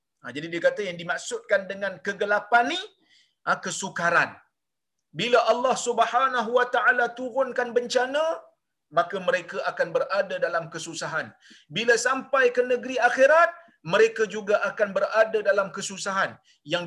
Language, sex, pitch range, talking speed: Malayalam, male, 190-260 Hz, 130 wpm